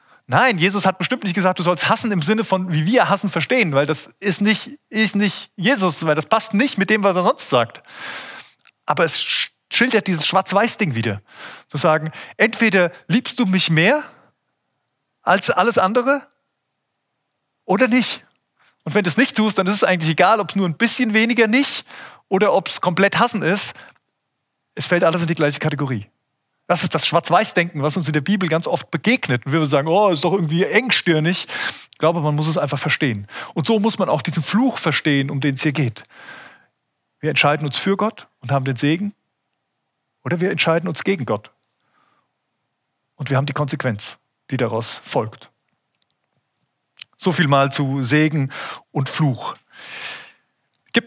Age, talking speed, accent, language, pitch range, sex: 30-49, 180 wpm, German, German, 150-205 Hz, male